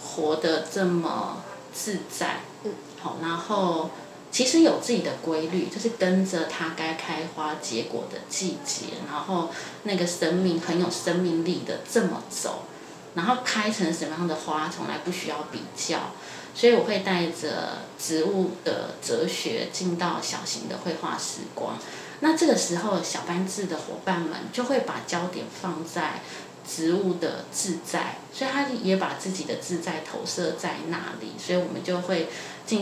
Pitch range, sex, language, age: 165-200 Hz, female, Chinese, 20-39